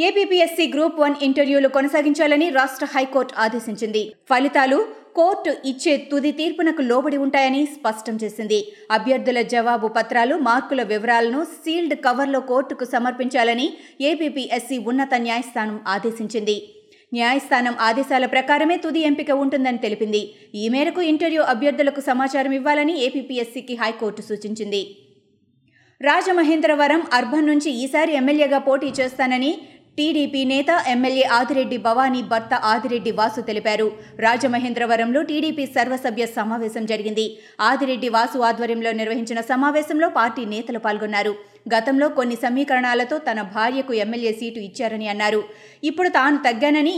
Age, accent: 20-39, native